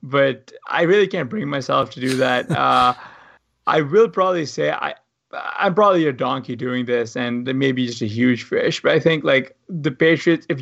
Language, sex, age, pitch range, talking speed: English, male, 20-39, 125-155 Hz, 210 wpm